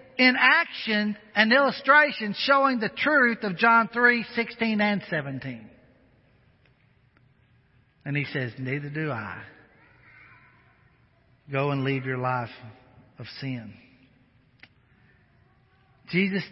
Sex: male